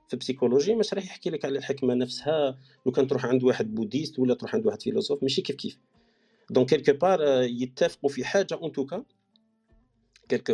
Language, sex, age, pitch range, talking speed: Arabic, male, 40-59, 125-170 Hz, 180 wpm